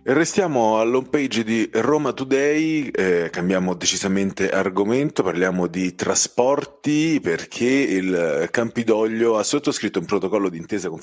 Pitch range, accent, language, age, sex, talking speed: 95-130 Hz, native, Italian, 30-49, male, 120 wpm